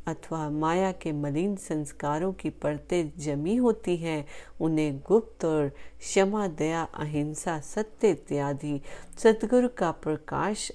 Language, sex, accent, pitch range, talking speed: Hindi, female, native, 155-200 Hz, 115 wpm